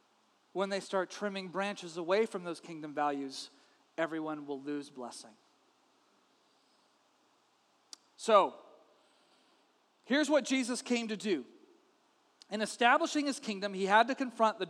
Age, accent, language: 40-59, American, English